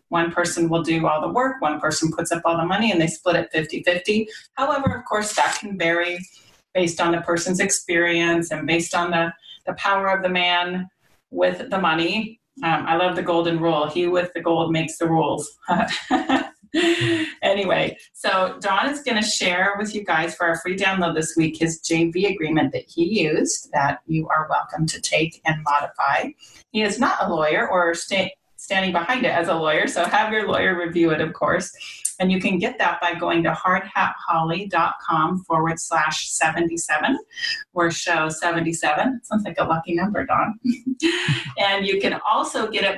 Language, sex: English, female